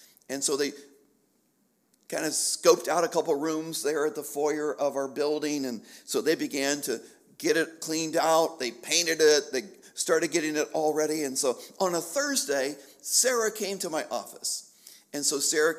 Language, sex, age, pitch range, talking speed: English, male, 50-69, 150-200 Hz, 180 wpm